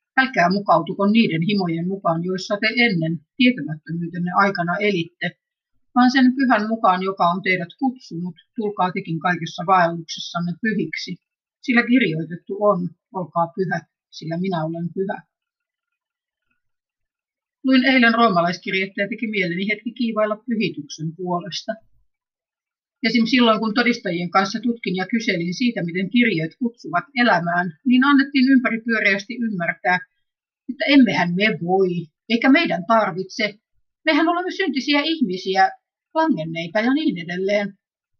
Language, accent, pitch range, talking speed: Finnish, native, 180-250 Hz, 120 wpm